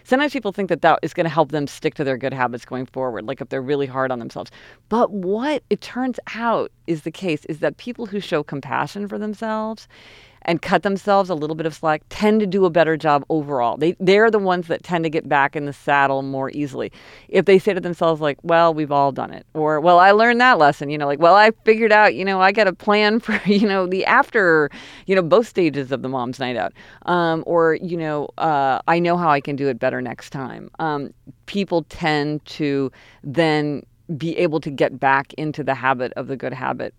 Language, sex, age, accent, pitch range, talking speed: English, female, 40-59, American, 135-180 Hz, 235 wpm